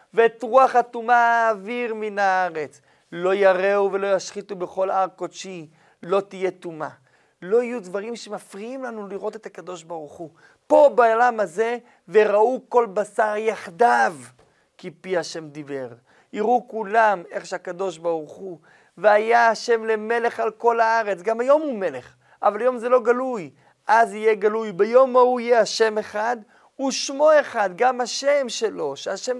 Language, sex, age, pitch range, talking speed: Hebrew, male, 40-59, 180-235 Hz, 145 wpm